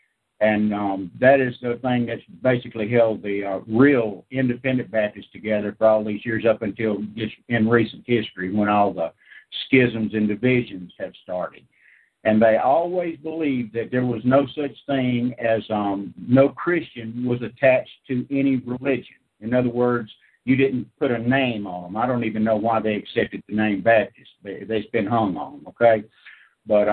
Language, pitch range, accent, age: English, 110-130 Hz, American, 60-79